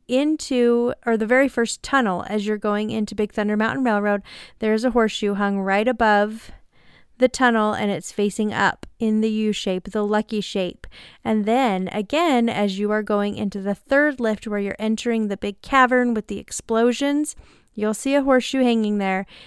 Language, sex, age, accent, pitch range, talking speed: English, female, 30-49, American, 205-245 Hz, 180 wpm